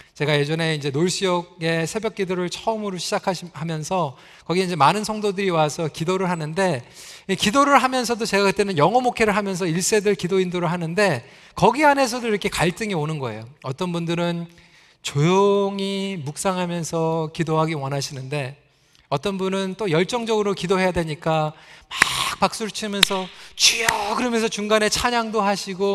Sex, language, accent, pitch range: male, Korean, native, 170-220 Hz